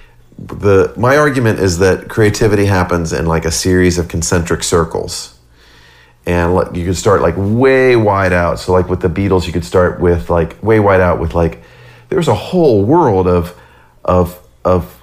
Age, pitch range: 40-59, 85-100 Hz